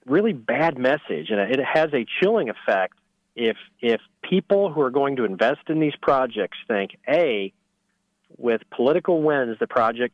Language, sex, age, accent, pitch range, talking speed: English, male, 40-59, American, 120-175 Hz, 160 wpm